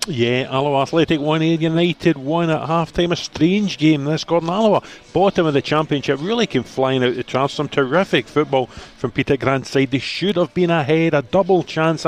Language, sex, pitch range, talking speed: English, male, 135-165 Hz, 200 wpm